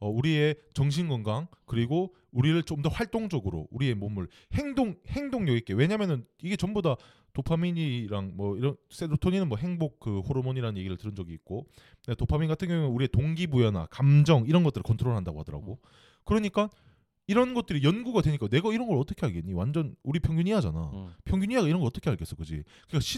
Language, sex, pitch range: Korean, male, 115-170 Hz